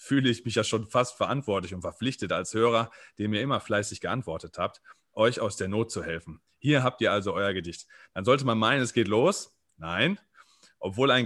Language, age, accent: German, 30-49, German